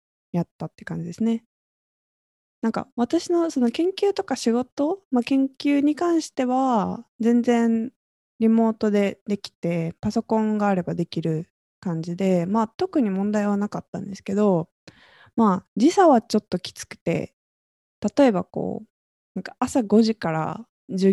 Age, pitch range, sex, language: 20-39, 190-245 Hz, female, Japanese